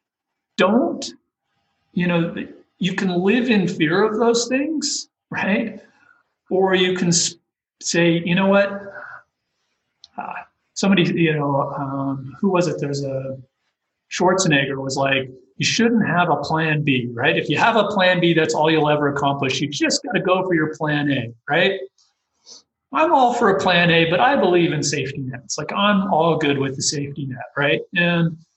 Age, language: 40-59, English